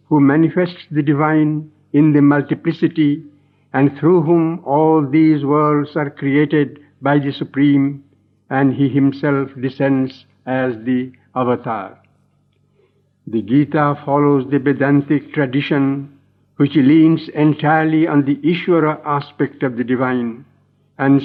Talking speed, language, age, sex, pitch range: 120 wpm, English, 60-79, male, 135-155 Hz